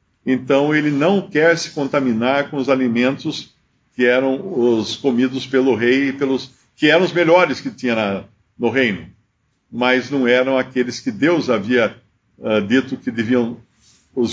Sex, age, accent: male, 50-69, Brazilian